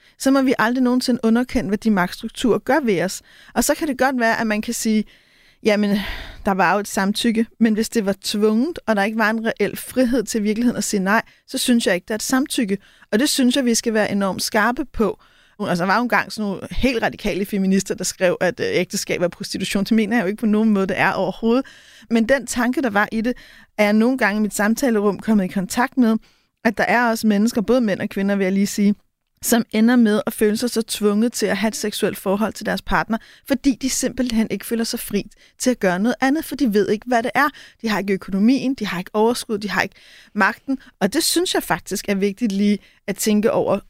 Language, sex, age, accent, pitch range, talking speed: Danish, female, 30-49, native, 195-240 Hz, 245 wpm